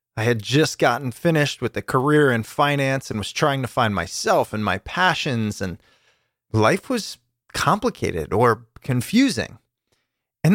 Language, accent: English, American